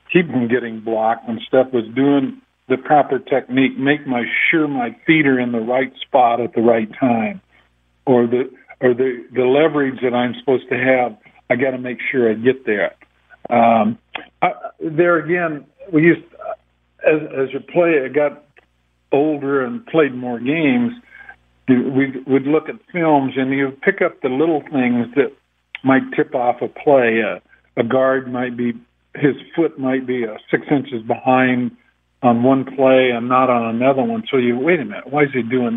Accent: American